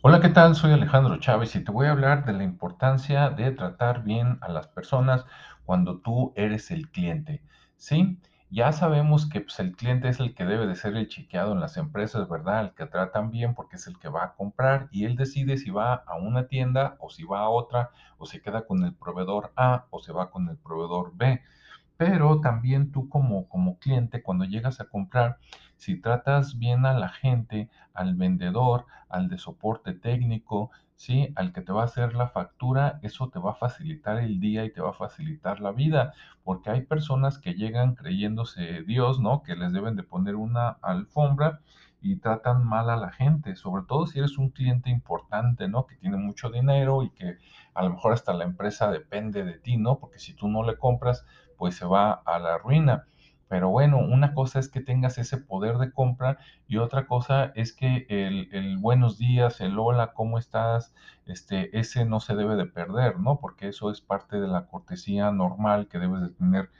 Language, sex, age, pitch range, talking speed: Spanish, male, 50-69, 105-145 Hz, 205 wpm